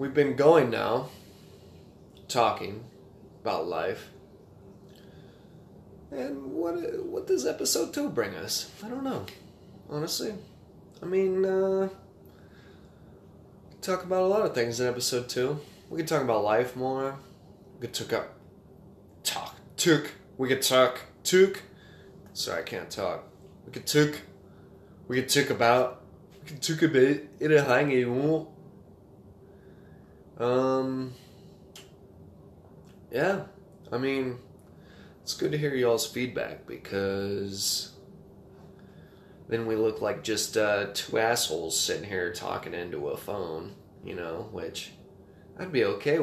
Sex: male